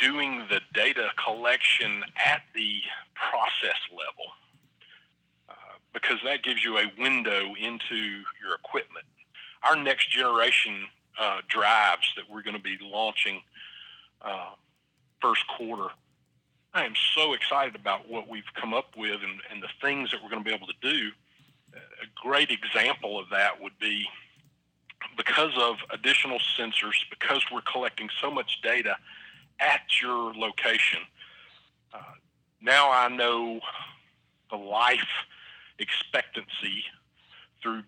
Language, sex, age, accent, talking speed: English, male, 40-59, American, 125 wpm